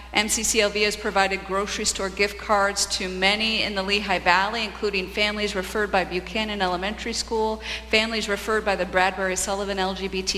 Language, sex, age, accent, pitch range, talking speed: English, female, 50-69, American, 175-215 Hz, 155 wpm